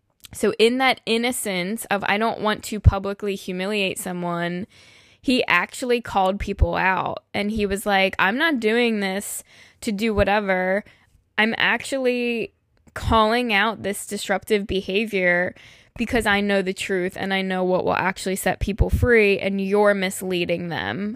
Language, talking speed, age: English, 150 wpm, 10-29